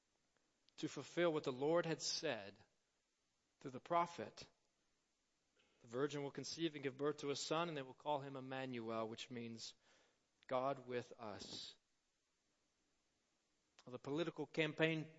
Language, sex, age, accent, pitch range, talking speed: English, male, 40-59, American, 160-230 Hz, 135 wpm